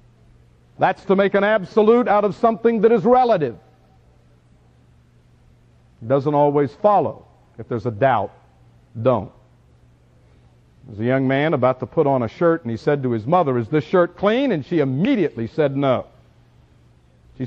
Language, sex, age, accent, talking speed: English, male, 50-69, American, 160 wpm